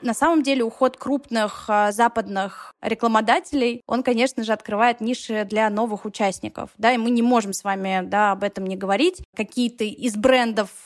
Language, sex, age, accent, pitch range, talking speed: Russian, female, 20-39, native, 205-235 Hz, 160 wpm